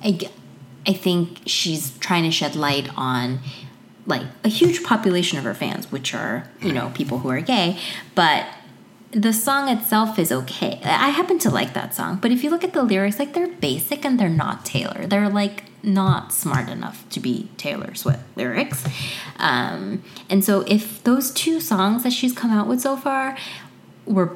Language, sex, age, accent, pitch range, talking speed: English, female, 20-39, American, 155-215 Hz, 185 wpm